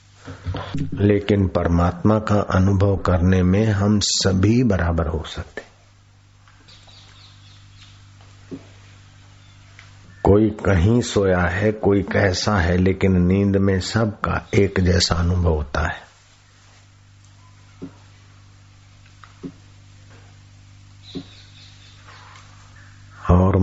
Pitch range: 90-100 Hz